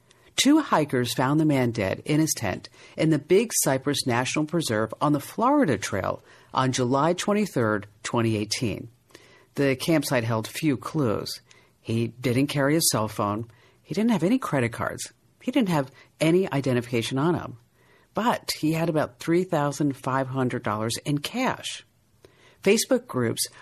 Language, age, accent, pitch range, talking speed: English, 50-69, American, 120-170 Hz, 140 wpm